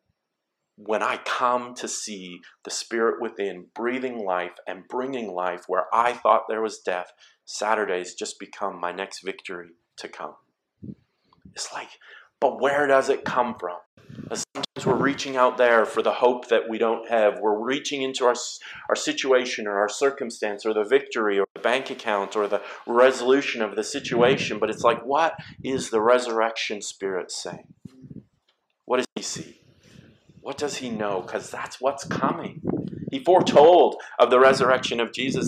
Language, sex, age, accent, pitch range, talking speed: English, male, 40-59, American, 110-135 Hz, 165 wpm